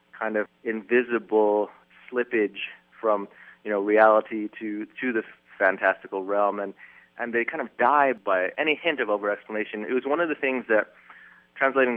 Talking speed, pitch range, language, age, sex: 165 wpm, 100-125 Hz, English, 30-49, male